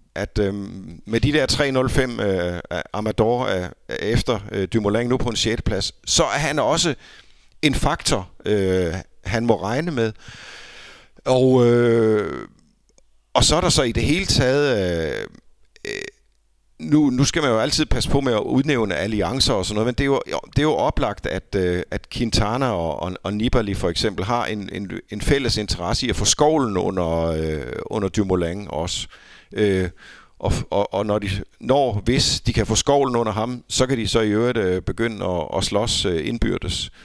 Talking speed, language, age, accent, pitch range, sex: 185 wpm, Danish, 50-69, native, 95-125 Hz, male